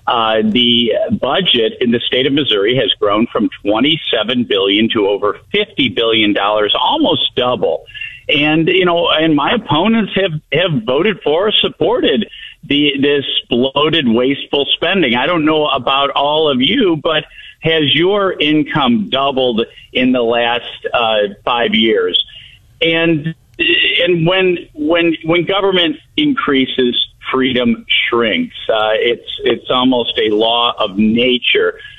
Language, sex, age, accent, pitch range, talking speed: English, male, 50-69, American, 125-175 Hz, 135 wpm